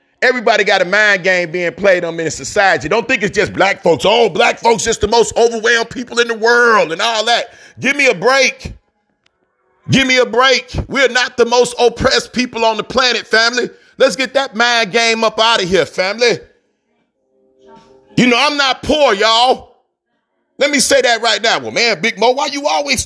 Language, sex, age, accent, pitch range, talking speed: English, male, 40-59, American, 225-265 Hz, 205 wpm